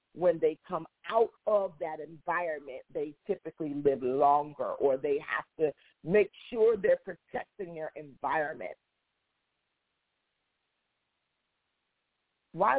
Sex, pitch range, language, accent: female, 170-225 Hz, English, American